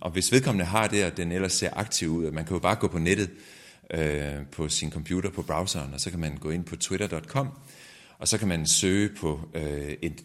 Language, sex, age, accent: Danish, male, 30-49, native